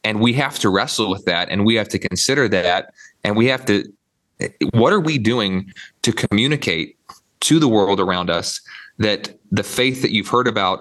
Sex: male